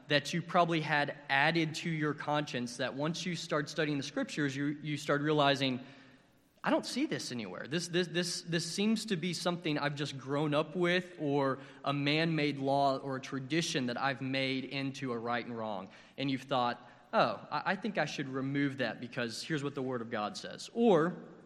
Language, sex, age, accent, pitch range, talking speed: English, male, 20-39, American, 135-170 Hz, 200 wpm